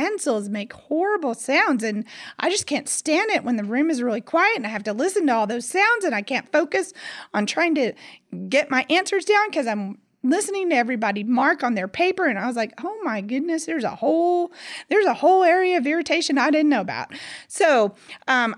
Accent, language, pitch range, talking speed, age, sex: American, English, 210-280 Hz, 215 wpm, 30-49, female